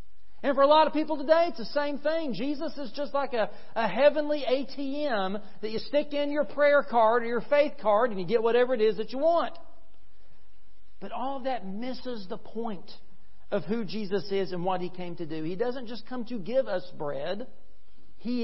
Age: 50-69